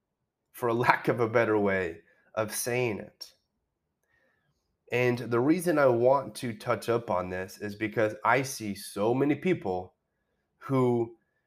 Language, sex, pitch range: English, male, 100-125 Hz